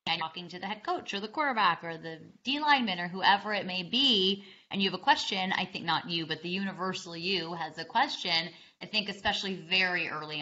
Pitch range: 180-225 Hz